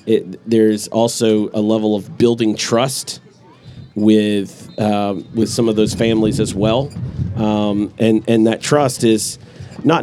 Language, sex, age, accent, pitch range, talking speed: English, male, 40-59, American, 105-125 Hz, 145 wpm